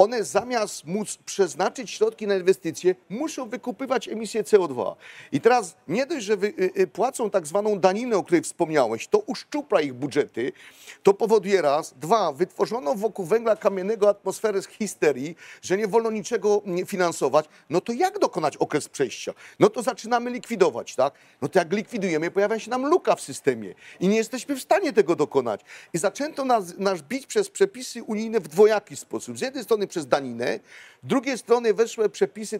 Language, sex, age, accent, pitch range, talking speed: Polish, male, 40-59, native, 185-235 Hz, 170 wpm